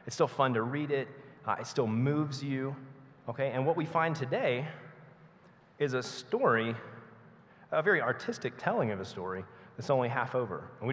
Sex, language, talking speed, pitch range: male, English, 180 wpm, 115-145 Hz